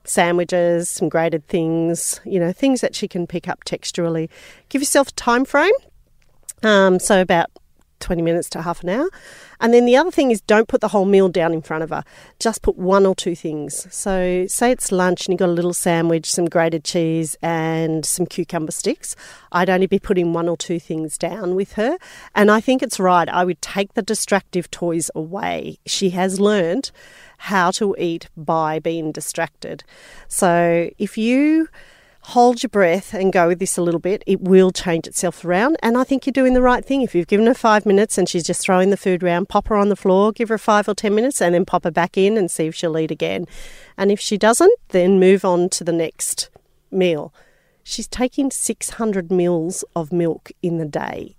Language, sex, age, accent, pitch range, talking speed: English, female, 40-59, Australian, 170-215 Hz, 210 wpm